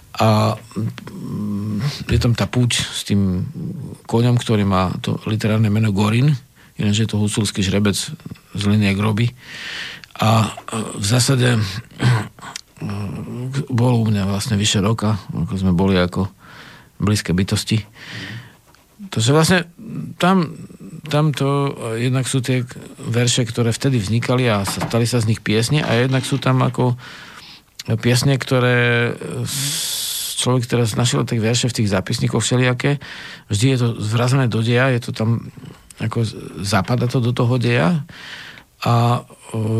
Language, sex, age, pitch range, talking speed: Slovak, male, 50-69, 110-135 Hz, 130 wpm